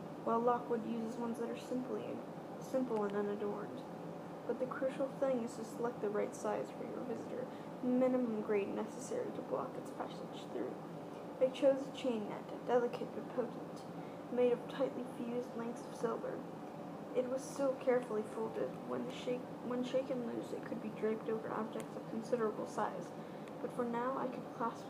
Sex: female